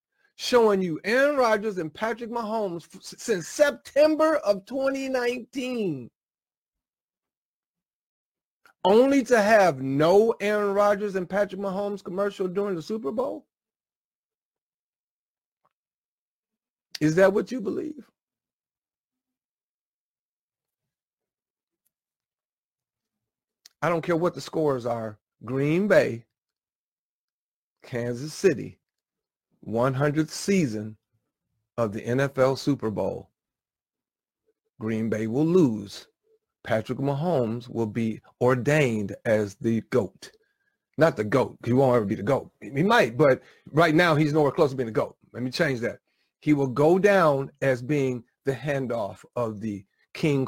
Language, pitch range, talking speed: English, 130-220 Hz, 115 wpm